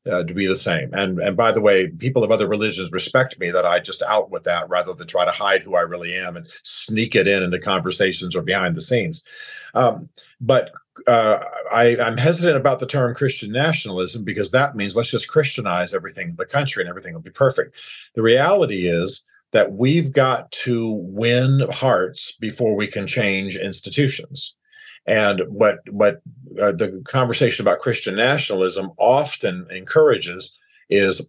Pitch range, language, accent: 105-140 Hz, English, American